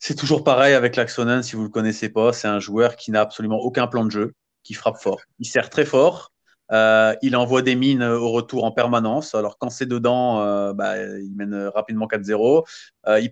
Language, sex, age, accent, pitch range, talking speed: French, male, 30-49, French, 110-130 Hz, 210 wpm